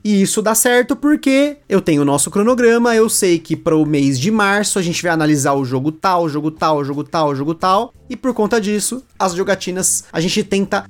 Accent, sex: Brazilian, male